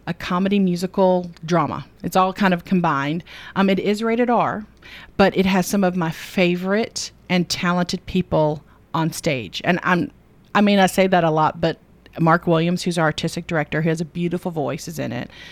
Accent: American